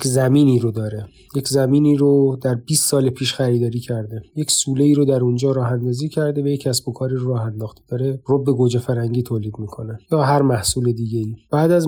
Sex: male